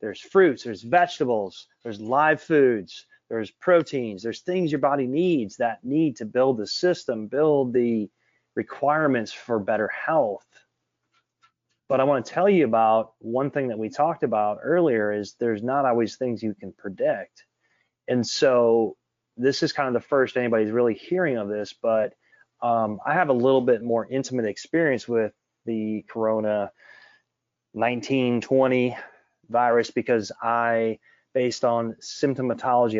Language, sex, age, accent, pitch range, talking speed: English, male, 30-49, American, 110-135 Hz, 145 wpm